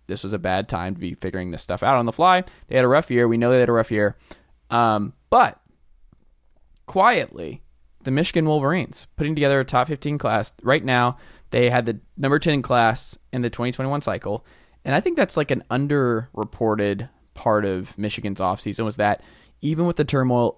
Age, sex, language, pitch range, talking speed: 20-39, male, English, 100-130 Hz, 195 wpm